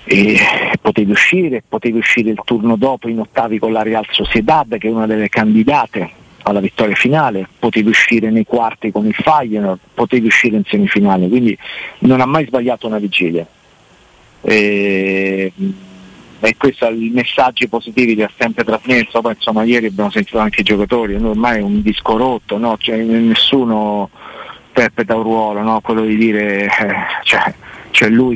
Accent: native